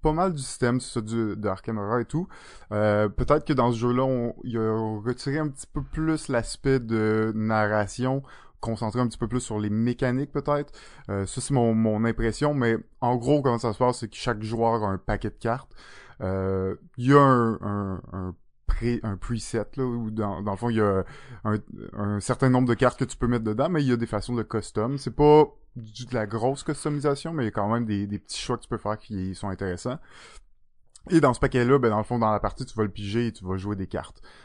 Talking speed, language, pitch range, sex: 245 wpm, French, 100-130 Hz, male